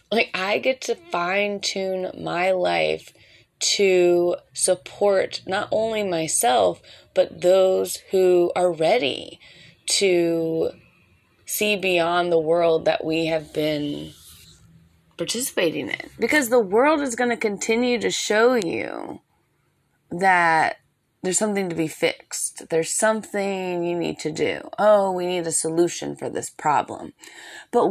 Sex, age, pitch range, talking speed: female, 20-39, 170-225 Hz, 125 wpm